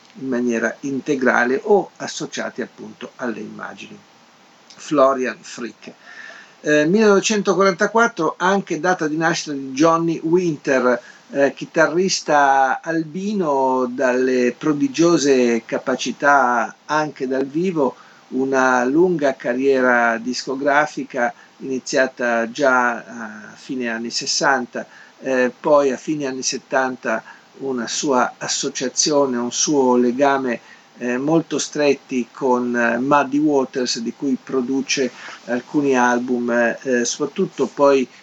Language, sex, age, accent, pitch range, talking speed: Italian, male, 50-69, native, 125-160 Hz, 100 wpm